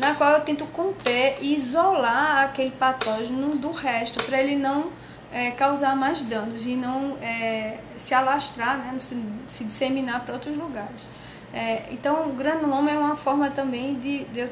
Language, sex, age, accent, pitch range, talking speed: Portuguese, female, 20-39, Brazilian, 250-300 Hz, 175 wpm